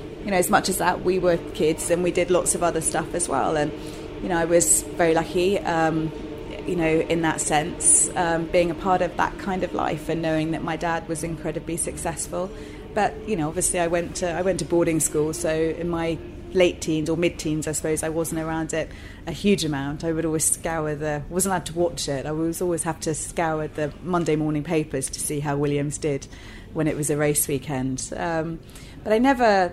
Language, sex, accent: English, female, British